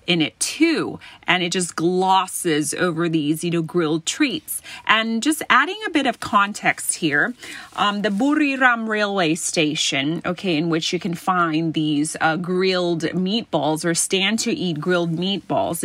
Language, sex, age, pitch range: Thai, female, 30-49, 165-225 Hz